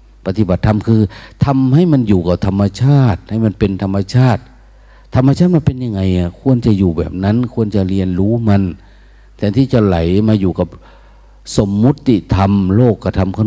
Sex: male